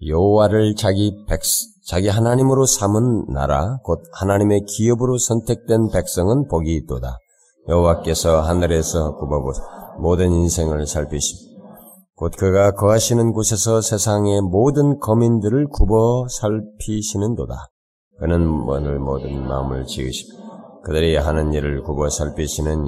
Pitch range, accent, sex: 75-110 Hz, native, male